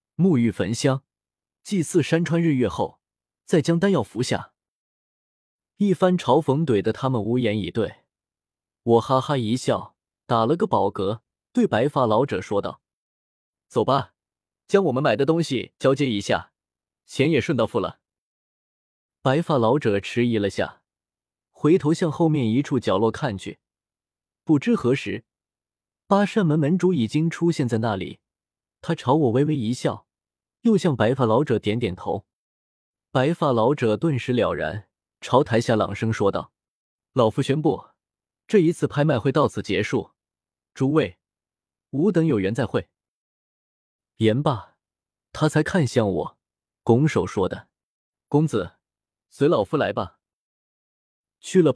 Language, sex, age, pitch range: Chinese, male, 20-39, 110-160 Hz